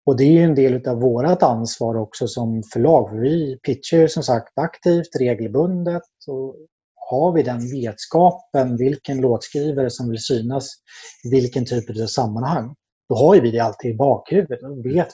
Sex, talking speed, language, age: male, 170 wpm, Swedish, 30-49